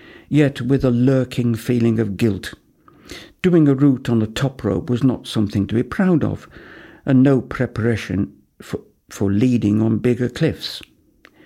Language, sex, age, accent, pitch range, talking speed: English, male, 60-79, British, 105-135 Hz, 155 wpm